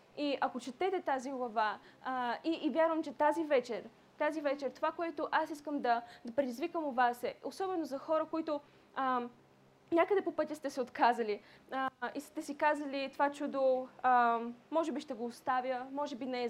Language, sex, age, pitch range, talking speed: Bulgarian, female, 20-39, 255-300 Hz, 185 wpm